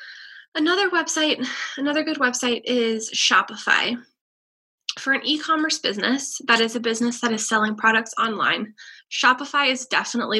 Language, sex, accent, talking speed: English, female, American, 135 wpm